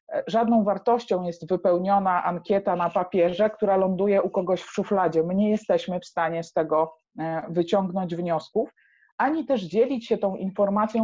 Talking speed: 150 wpm